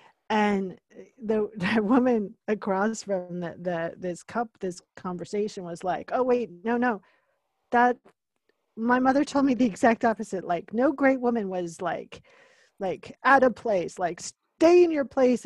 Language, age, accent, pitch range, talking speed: English, 40-59, American, 190-240 Hz, 160 wpm